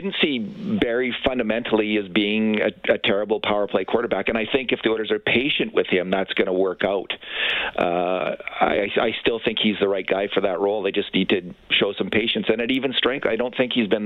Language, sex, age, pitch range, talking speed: English, male, 40-59, 100-115 Hz, 235 wpm